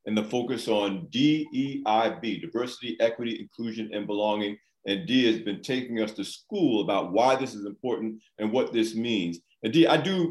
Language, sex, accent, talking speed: English, male, American, 170 wpm